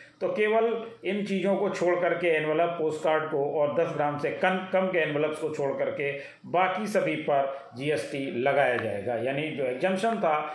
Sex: male